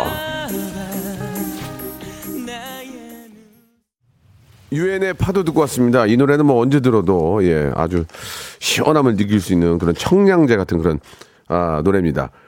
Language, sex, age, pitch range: Korean, male, 40-59, 110-155 Hz